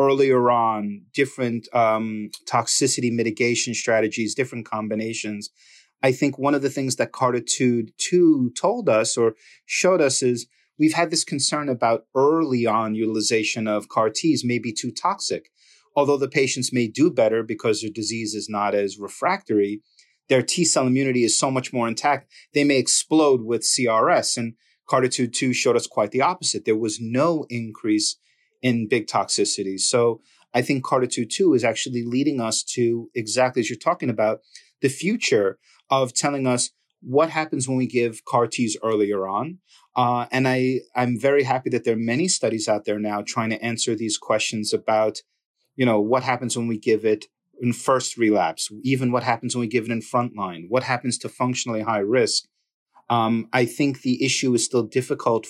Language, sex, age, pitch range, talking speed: English, male, 30-49, 110-135 Hz, 175 wpm